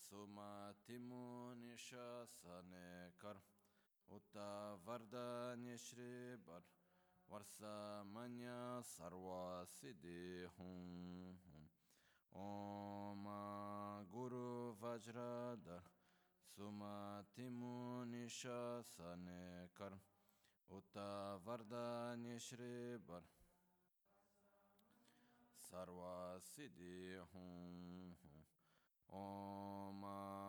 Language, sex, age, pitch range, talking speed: Italian, male, 20-39, 90-120 Hz, 35 wpm